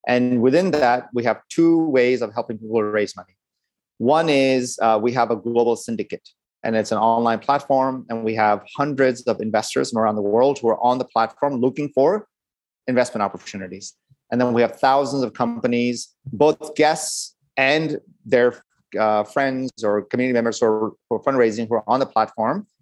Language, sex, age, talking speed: English, male, 30-49, 180 wpm